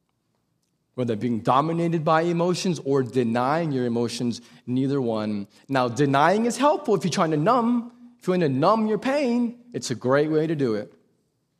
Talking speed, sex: 175 wpm, male